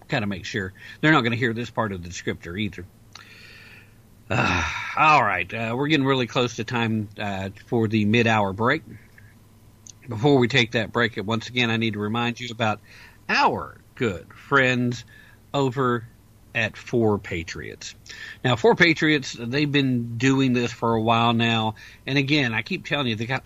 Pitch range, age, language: 105-125 Hz, 50-69, English